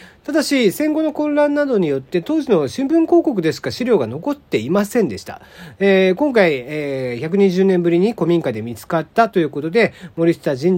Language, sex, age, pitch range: Japanese, male, 40-59, 150-220 Hz